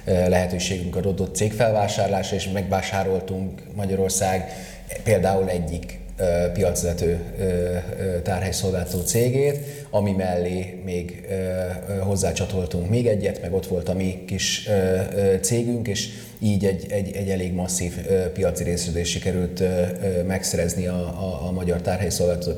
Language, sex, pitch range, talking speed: Hungarian, male, 90-100 Hz, 105 wpm